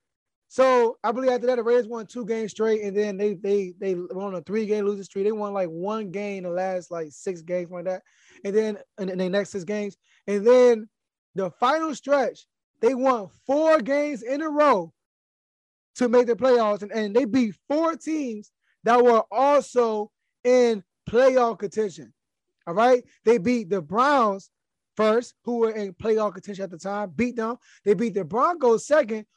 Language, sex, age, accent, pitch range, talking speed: English, male, 20-39, American, 210-270 Hz, 190 wpm